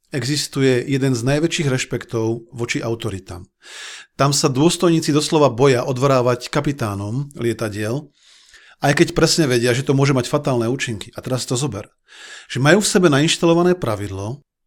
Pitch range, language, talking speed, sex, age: 120-140 Hz, Slovak, 145 wpm, male, 40-59